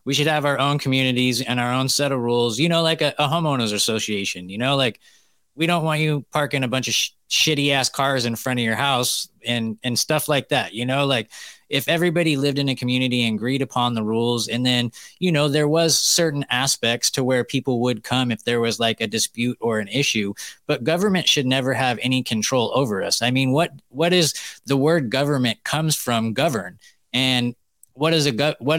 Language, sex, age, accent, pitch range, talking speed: English, male, 20-39, American, 120-145 Hz, 210 wpm